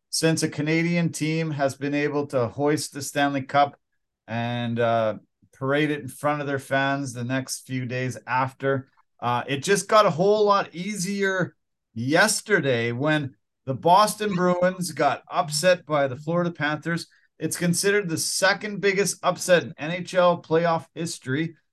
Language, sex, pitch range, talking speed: English, male, 145-190 Hz, 150 wpm